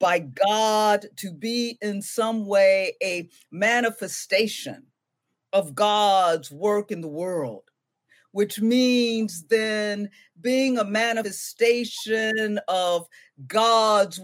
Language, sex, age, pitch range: English, female, 50-69, 170-225 Hz